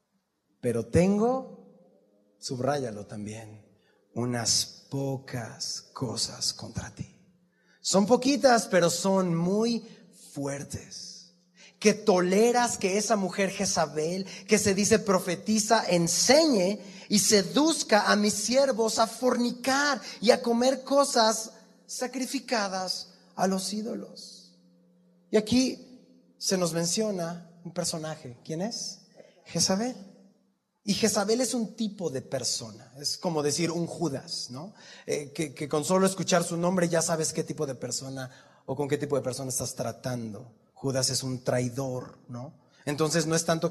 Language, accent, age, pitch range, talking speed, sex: Spanish, Mexican, 30-49, 145-210 Hz, 130 wpm, male